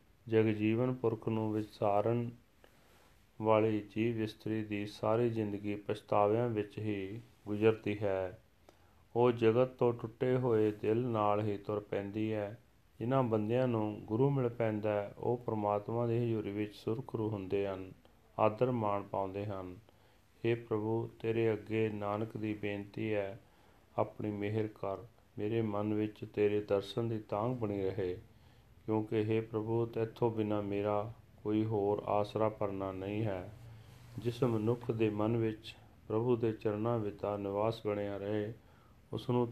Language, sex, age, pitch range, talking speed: Punjabi, male, 40-59, 105-115 Hz, 125 wpm